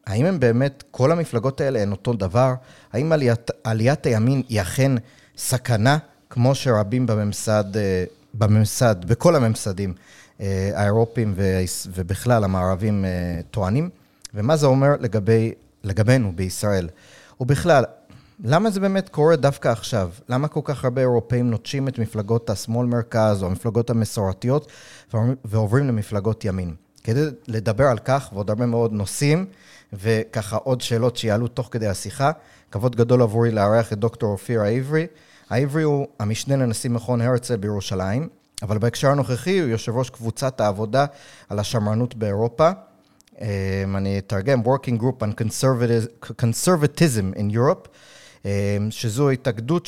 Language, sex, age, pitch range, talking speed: Hebrew, male, 30-49, 105-135 Hz, 130 wpm